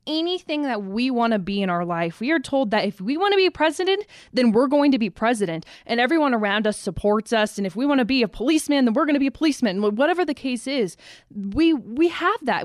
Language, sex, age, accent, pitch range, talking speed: English, female, 20-39, American, 200-280 Hz, 260 wpm